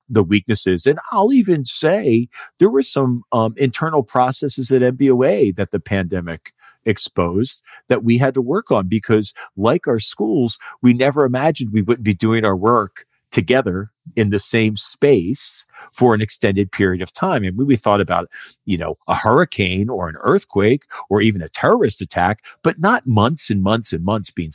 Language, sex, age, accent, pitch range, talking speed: English, male, 40-59, American, 100-125 Hz, 180 wpm